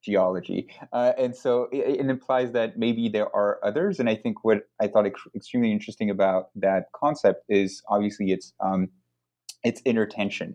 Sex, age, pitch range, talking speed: male, 30-49, 95-115 Hz, 170 wpm